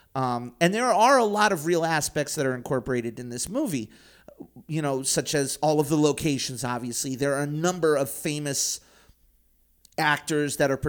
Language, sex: English, male